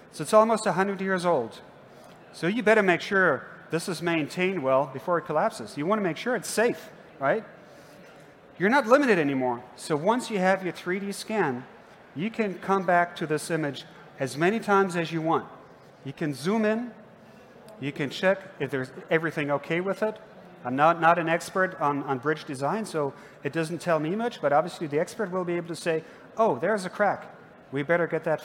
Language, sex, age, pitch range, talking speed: English, male, 40-59, 145-195 Hz, 200 wpm